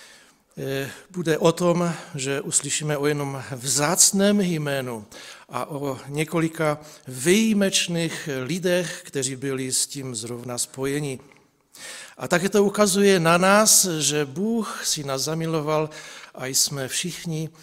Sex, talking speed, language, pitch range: male, 115 wpm, Czech, 135-175 Hz